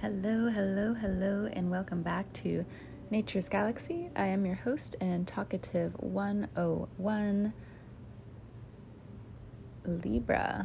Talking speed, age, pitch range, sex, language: 95 wpm, 20-39, 125-195 Hz, female, English